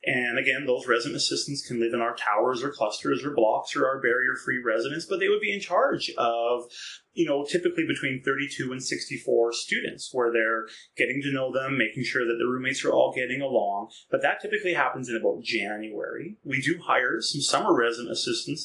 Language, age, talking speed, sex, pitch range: English, 30-49, 200 wpm, male, 115-165 Hz